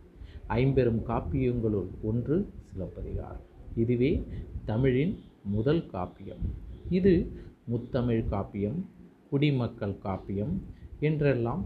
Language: Tamil